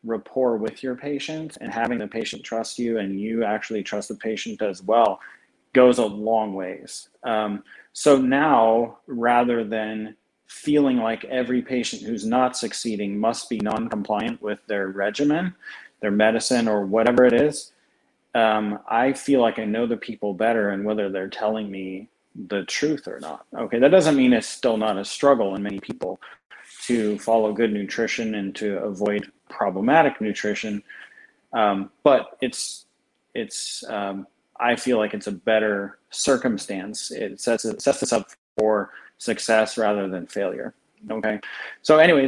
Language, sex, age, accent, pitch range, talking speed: English, male, 30-49, American, 105-130 Hz, 160 wpm